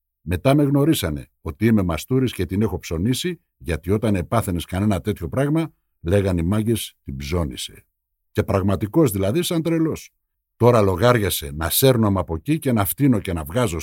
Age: 60-79